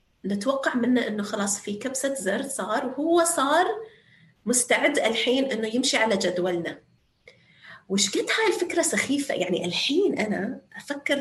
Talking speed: 130 wpm